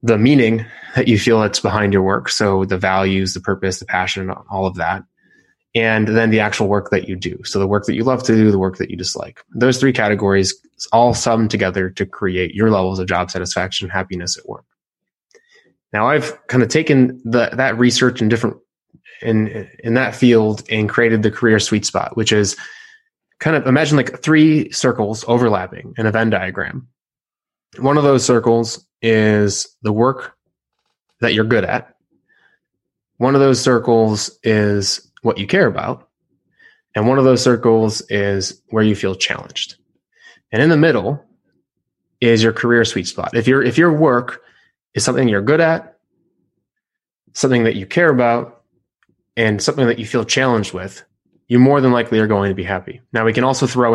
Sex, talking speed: male, 180 wpm